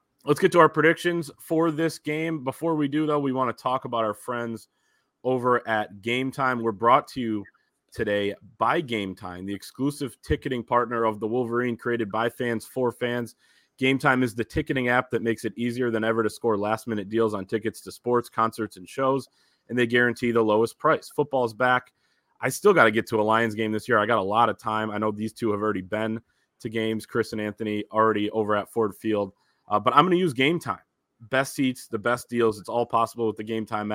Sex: male